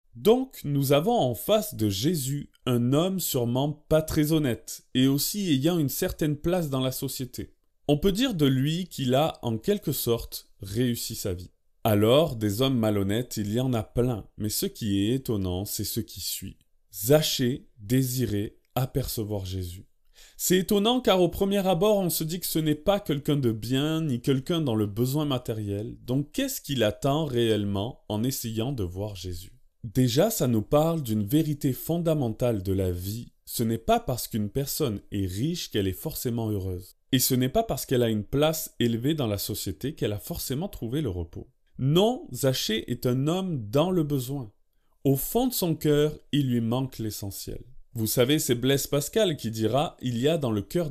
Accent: French